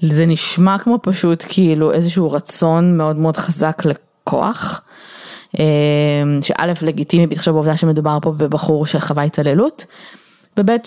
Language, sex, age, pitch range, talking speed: Hebrew, female, 20-39, 160-200 Hz, 115 wpm